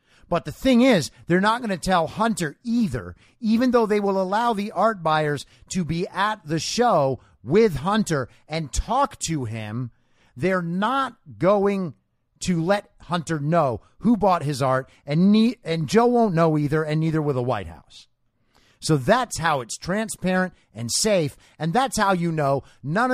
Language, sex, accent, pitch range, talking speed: English, male, American, 125-195 Hz, 175 wpm